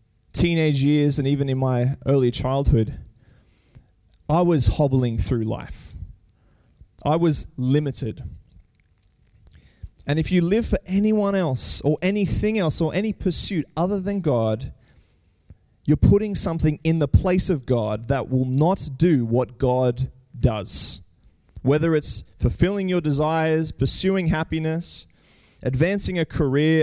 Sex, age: male, 20-39